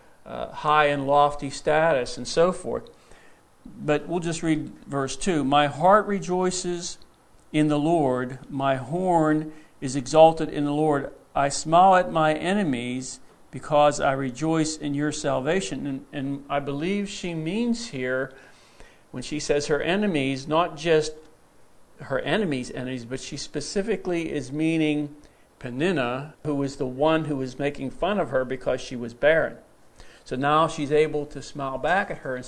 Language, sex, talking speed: English, male, 155 wpm